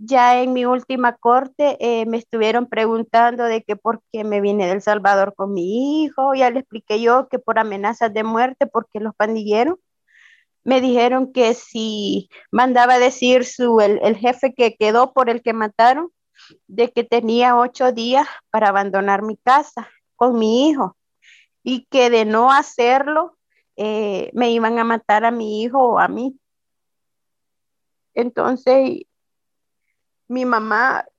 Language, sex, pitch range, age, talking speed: Spanish, female, 230-270 Hz, 30-49, 155 wpm